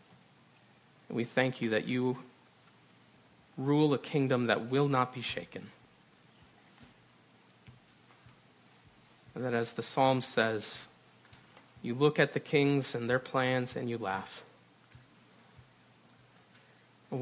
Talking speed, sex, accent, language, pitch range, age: 110 wpm, male, American, English, 115-130 Hz, 40-59